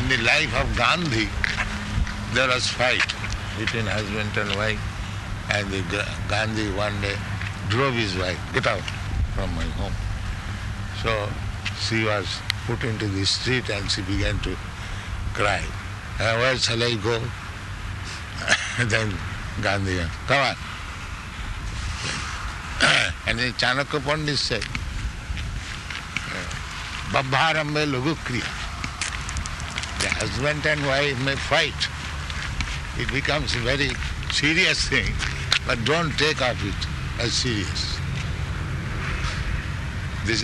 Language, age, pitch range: English, 60-79, 95-120 Hz